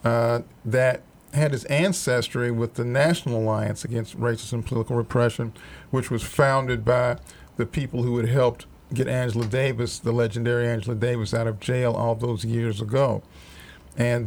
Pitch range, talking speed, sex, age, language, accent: 115-125 Hz, 160 wpm, male, 50-69, English, American